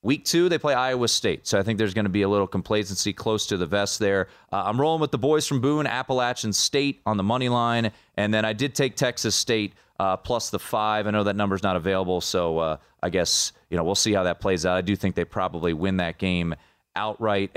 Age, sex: 30-49, male